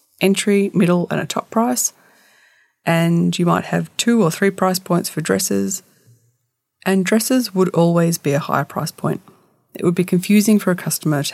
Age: 30-49